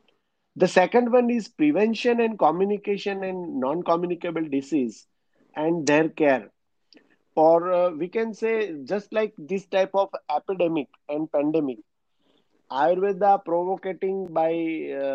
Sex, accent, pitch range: male, Indian, 140-190 Hz